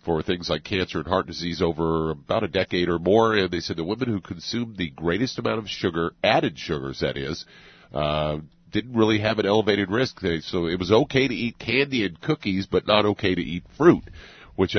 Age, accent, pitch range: 50-69, American, 80-105 Hz